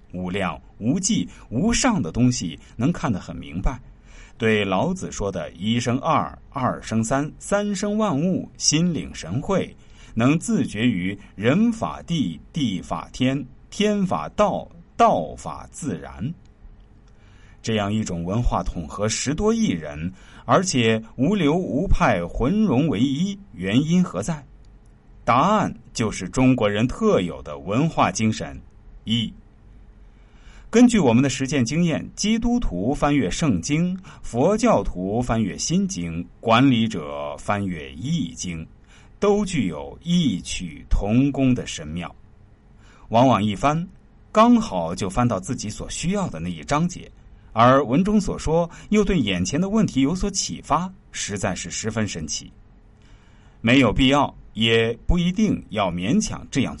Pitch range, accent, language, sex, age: 100-170 Hz, native, Chinese, male, 50-69